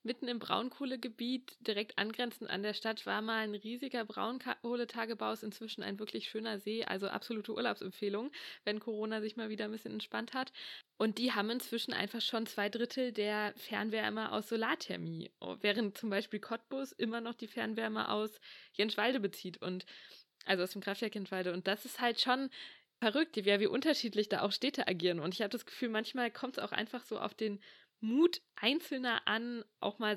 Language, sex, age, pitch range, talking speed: German, female, 20-39, 205-245 Hz, 180 wpm